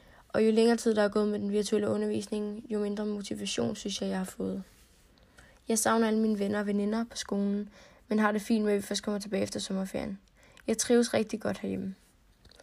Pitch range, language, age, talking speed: 200-220 Hz, Danish, 10-29, 215 wpm